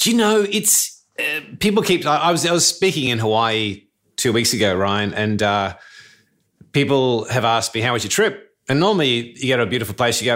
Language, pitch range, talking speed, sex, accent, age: English, 105-135 Hz, 225 wpm, male, Australian, 30-49